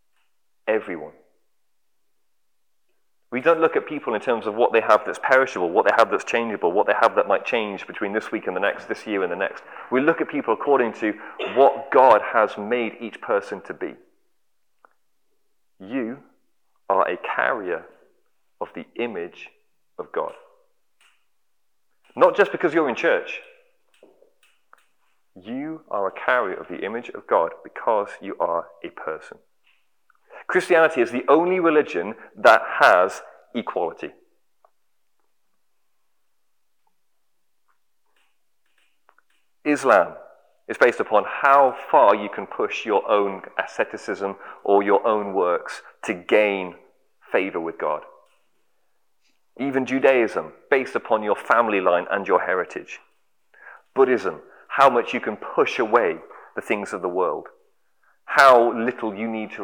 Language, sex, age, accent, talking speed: English, male, 30-49, British, 135 wpm